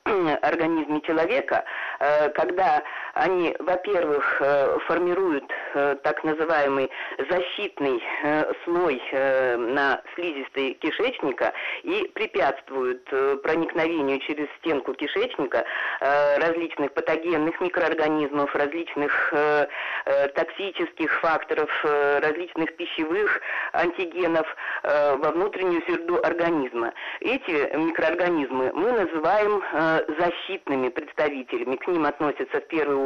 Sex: female